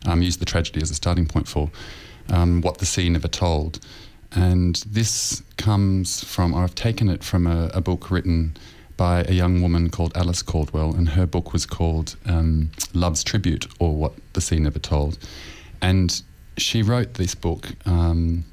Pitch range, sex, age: 85-100 Hz, male, 30-49